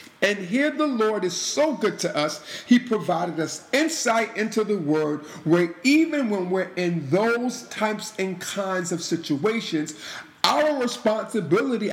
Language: English